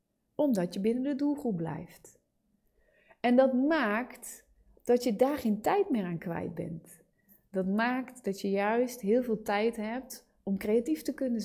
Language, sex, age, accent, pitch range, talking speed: Dutch, female, 30-49, Dutch, 190-250 Hz, 160 wpm